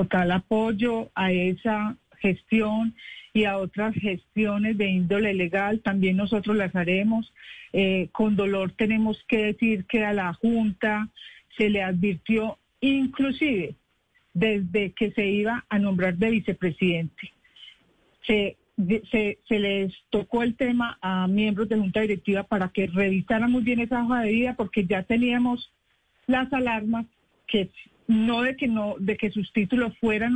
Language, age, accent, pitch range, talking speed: Spanish, 50-69, Colombian, 195-230 Hz, 145 wpm